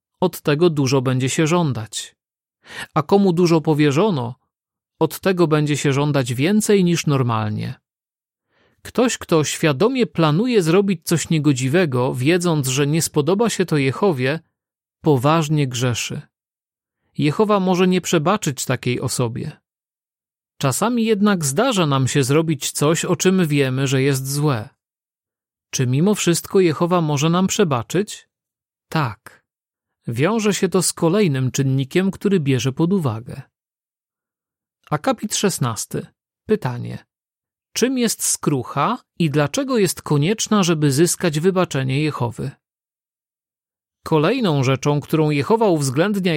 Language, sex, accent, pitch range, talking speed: Polish, male, native, 140-190 Hz, 120 wpm